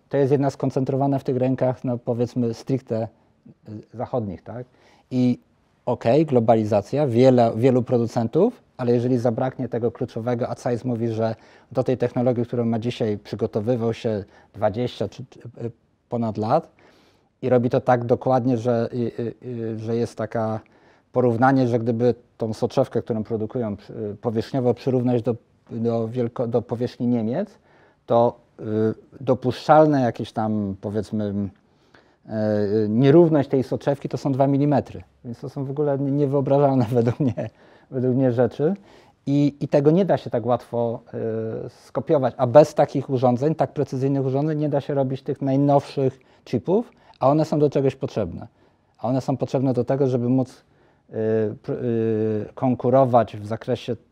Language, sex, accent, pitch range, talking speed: Polish, male, native, 115-135 Hz, 140 wpm